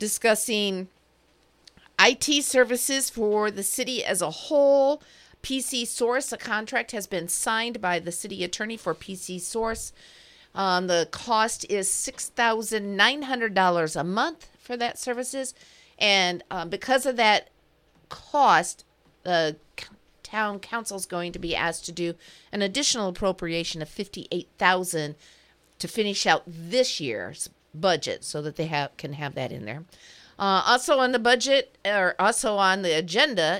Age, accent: 50-69, American